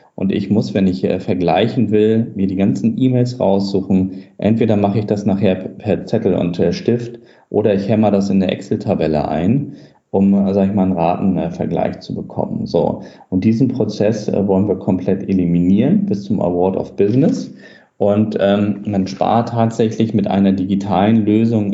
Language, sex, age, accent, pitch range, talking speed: German, male, 40-59, German, 95-125 Hz, 180 wpm